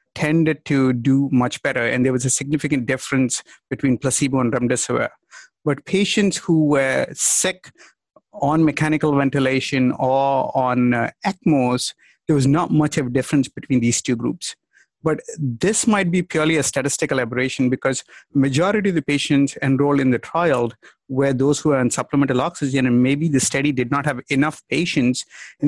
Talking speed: 165 wpm